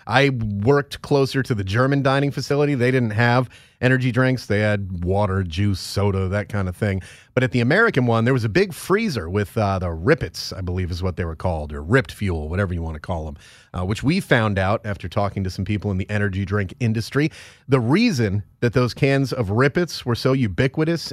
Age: 30-49